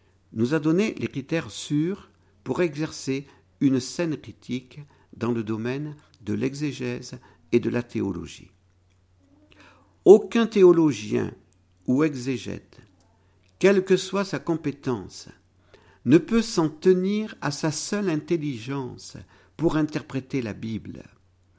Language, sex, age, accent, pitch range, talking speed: French, male, 50-69, French, 105-160 Hz, 115 wpm